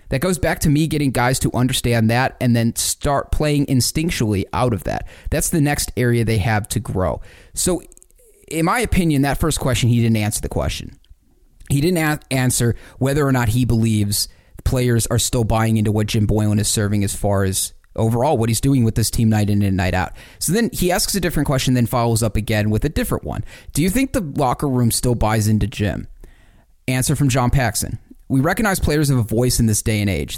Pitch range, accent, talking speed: 110-145 Hz, American, 220 wpm